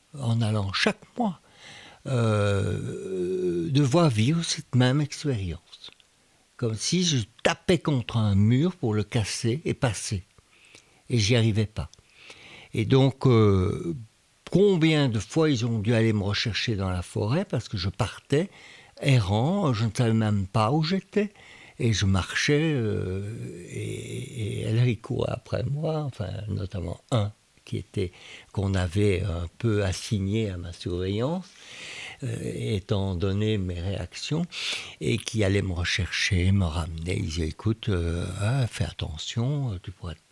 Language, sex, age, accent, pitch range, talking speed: French, male, 60-79, French, 95-130 Hz, 145 wpm